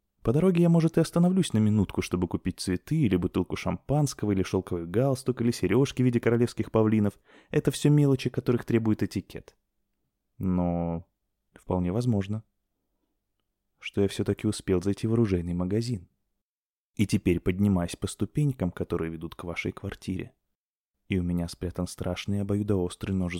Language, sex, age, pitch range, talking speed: Russian, male, 20-39, 90-115 Hz, 145 wpm